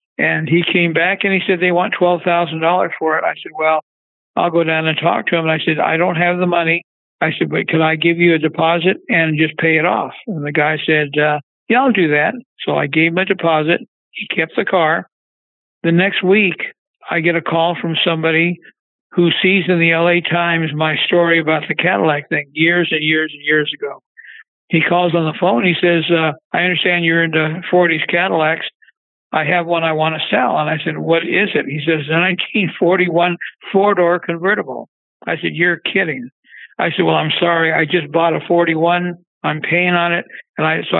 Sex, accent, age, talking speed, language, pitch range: male, American, 60-79, 210 wpm, English, 160-180 Hz